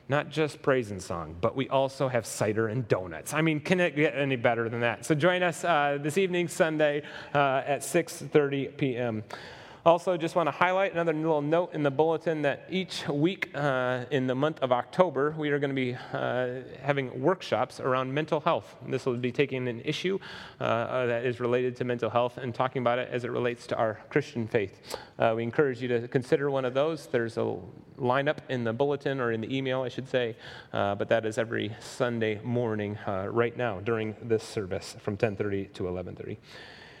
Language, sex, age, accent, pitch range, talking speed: English, male, 30-49, American, 120-155 Hz, 205 wpm